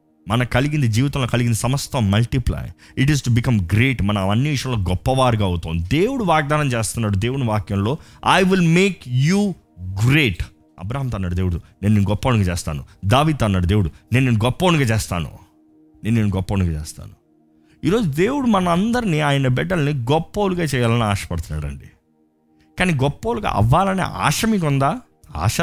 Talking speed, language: 135 wpm, Telugu